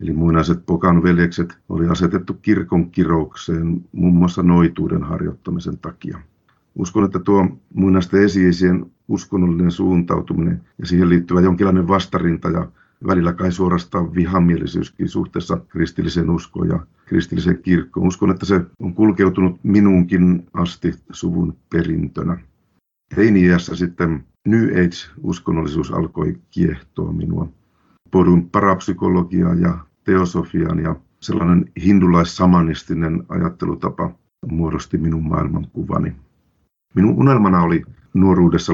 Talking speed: 100 wpm